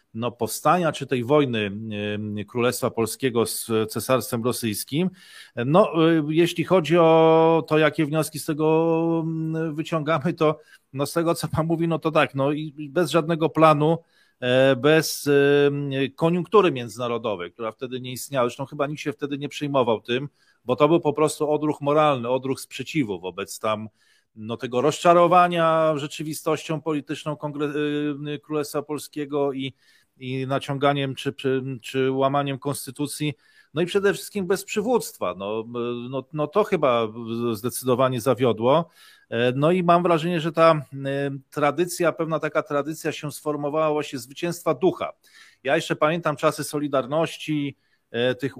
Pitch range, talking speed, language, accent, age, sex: 130-160 Hz, 135 wpm, Polish, native, 40-59, male